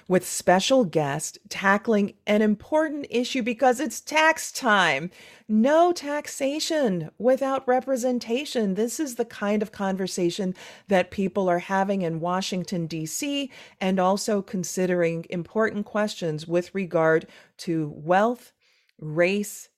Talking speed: 115 wpm